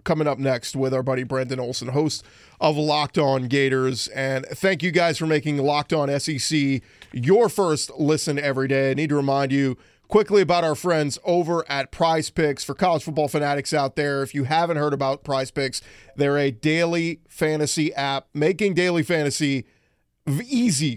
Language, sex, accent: English, male, American